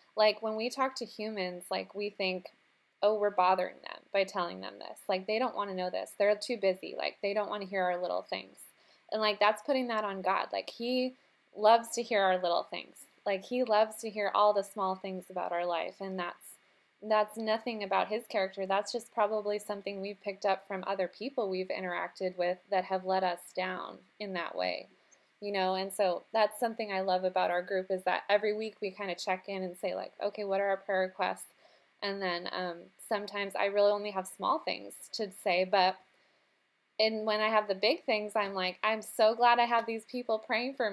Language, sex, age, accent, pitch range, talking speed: English, female, 20-39, American, 185-220 Hz, 220 wpm